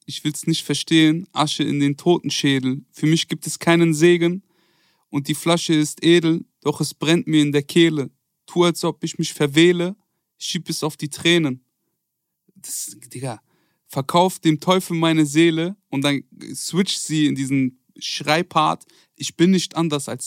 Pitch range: 140-170 Hz